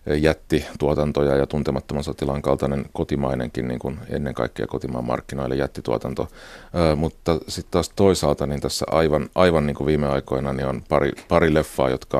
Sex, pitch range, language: male, 65-75 Hz, Finnish